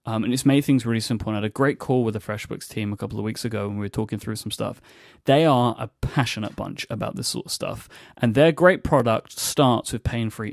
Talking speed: 255 wpm